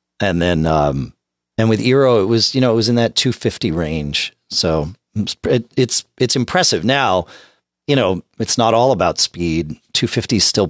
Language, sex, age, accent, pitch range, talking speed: English, male, 40-59, American, 85-140 Hz, 180 wpm